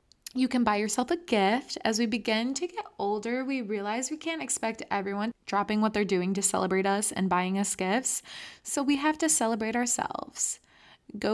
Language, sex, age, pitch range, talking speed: English, female, 20-39, 195-255 Hz, 190 wpm